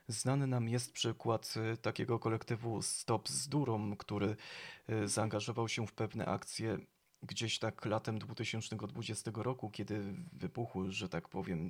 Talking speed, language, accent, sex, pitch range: 130 wpm, Polish, native, male, 110-130 Hz